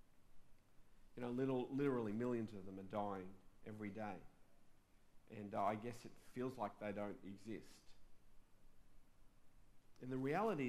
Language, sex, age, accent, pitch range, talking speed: English, male, 40-59, Australian, 110-135 Hz, 135 wpm